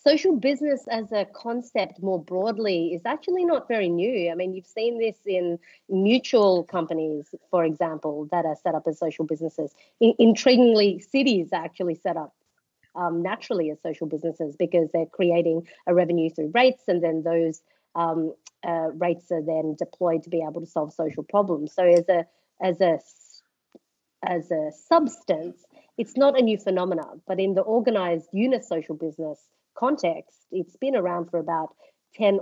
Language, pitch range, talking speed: English, 165-205 Hz, 165 wpm